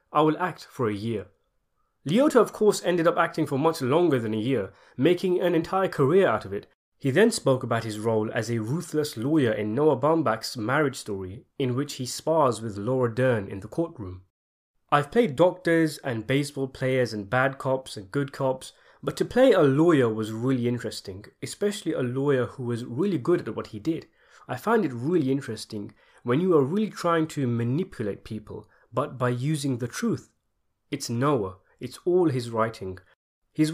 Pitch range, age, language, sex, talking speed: 110-155 Hz, 30-49, English, male, 190 wpm